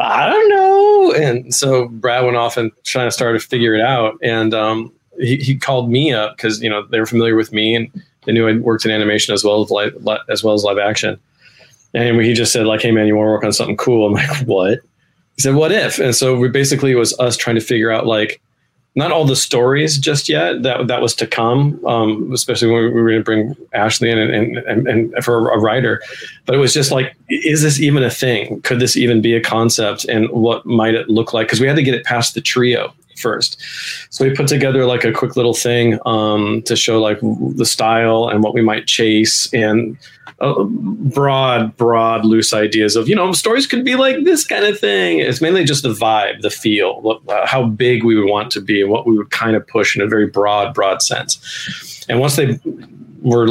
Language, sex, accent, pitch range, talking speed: English, male, American, 110-130 Hz, 235 wpm